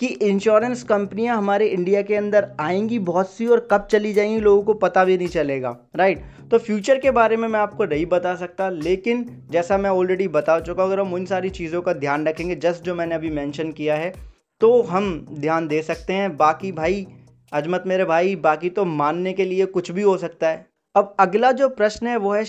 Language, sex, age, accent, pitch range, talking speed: Hindi, male, 20-39, native, 155-200 Hz, 215 wpm